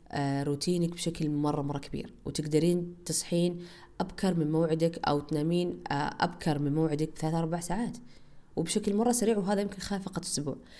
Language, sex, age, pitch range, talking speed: Arabic, female, 20-39, 140-175 Hz, 145 wpm